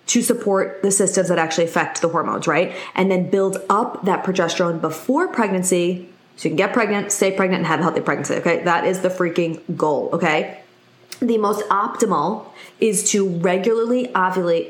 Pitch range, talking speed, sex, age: 175-220 Hz, 180 wpm, female, 20-39